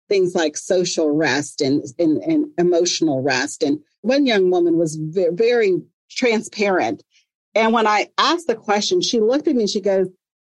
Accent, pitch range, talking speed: American, 180-235 Hz, 165 wpm